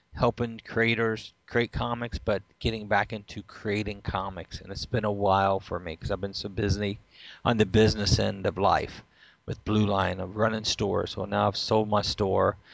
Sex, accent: male, American